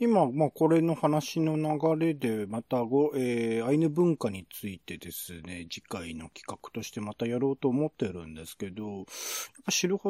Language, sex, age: Japanese, male, 40-59